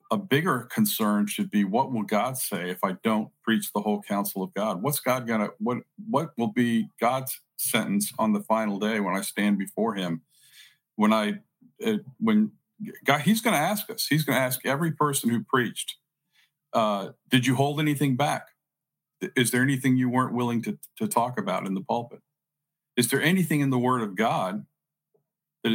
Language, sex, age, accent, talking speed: English, male, 50-69, American, 190 wpm